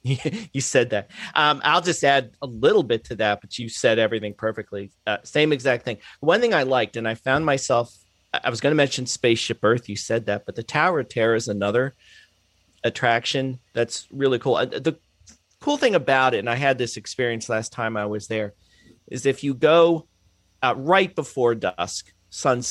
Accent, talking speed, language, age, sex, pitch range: American, 200 wpm, English, 40-59, male, 105-140 Hz